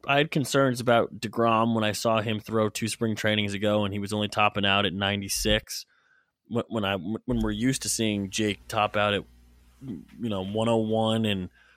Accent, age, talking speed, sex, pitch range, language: American, 20-39, 215 wpm, male, 95-115 Hz, English